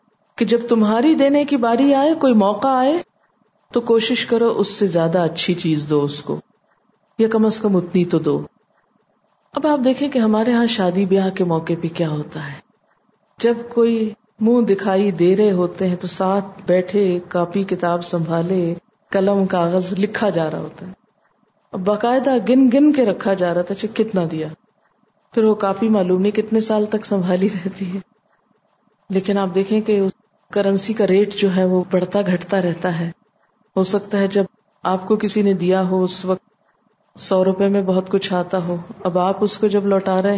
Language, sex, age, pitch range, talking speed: Urdu, female, 40-59, 185-220 Hz, 185 wpm